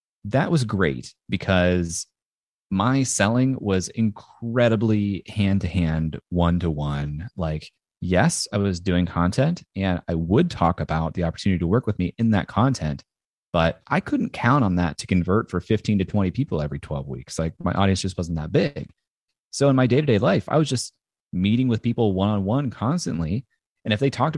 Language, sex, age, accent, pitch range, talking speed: English, male, 30-49, American, 85-110 Hz, 170 wpm